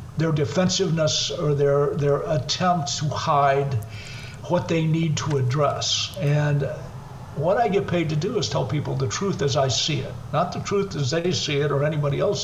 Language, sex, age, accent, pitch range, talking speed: English, male, 50-69, American, 135-165 Hz, 190 wpm